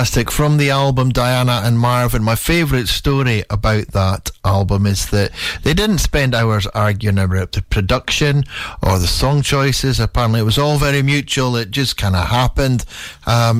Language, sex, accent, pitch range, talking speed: English, male, British, 110-150 Hz, 170 wpm